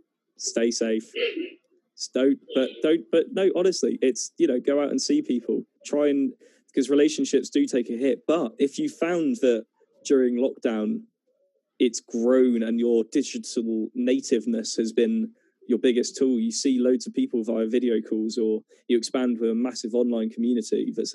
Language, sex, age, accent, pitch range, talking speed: English, male, 20-39, British, 120-180 Hz, 165 wpm